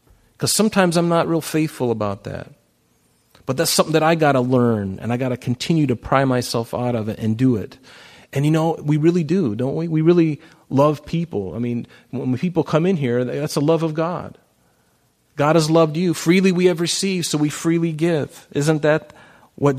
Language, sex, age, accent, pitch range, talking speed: English, male, 40-59, American, 115-155 Hz, 210 wpm